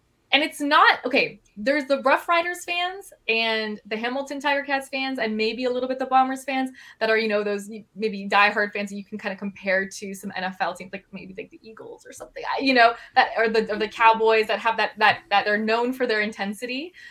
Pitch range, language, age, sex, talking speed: 200-260 Hz, English, 20-39, female, 230 wpm